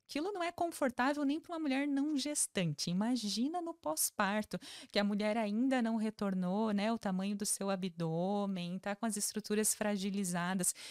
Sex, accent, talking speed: female, Brazilian, 165 wpm